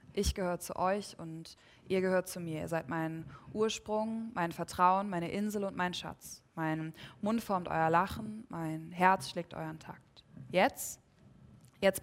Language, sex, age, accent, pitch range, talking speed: German, female, 20-39, German, 160-195 Hz, 160 wpm